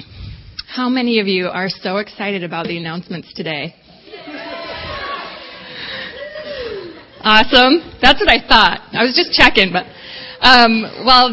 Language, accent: English, American